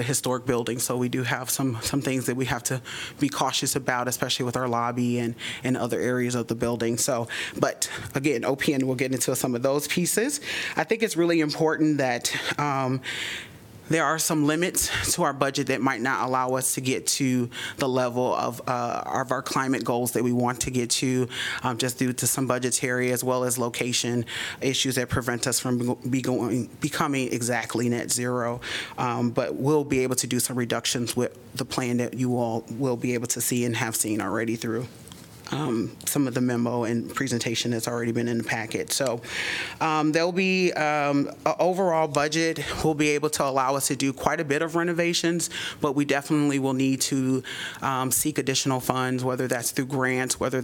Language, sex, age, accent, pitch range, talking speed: English, male, 30-49, American, 120-140 Hz, 200 wpm